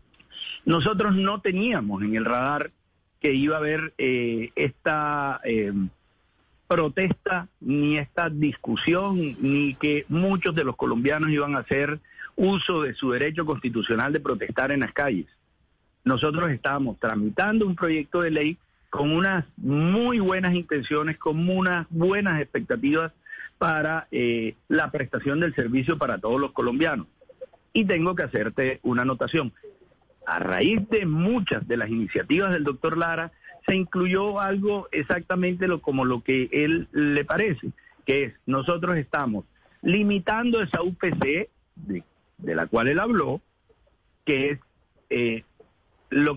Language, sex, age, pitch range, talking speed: Spanish, male, 50-69, 140-180 Hz, 135 wpm